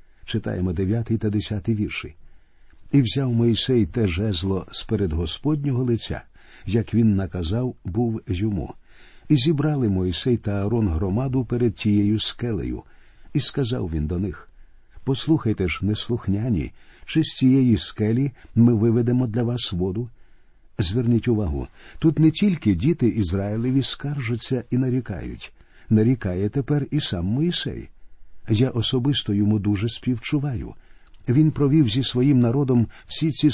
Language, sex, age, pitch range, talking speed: Ukrainian, male, 50-69, 105-130 Hz, 125 wpm